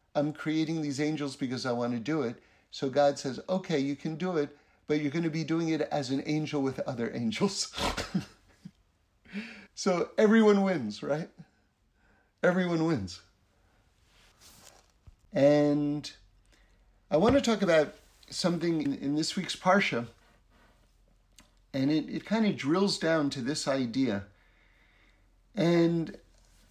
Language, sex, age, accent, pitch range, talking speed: English, male, 50-69, American, 115-170 Hz, 135 wpm